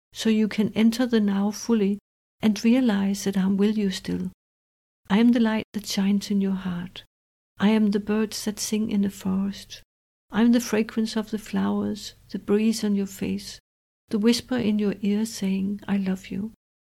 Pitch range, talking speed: 195-215 Hz, 190 wpm